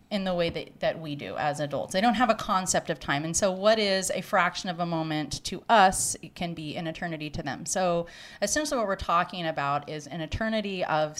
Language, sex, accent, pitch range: English, female, American, 165-200 Hz